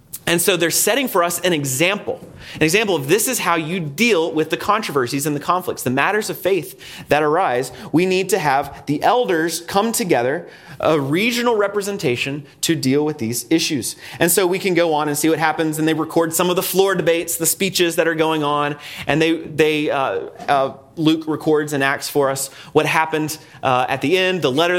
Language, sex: English, male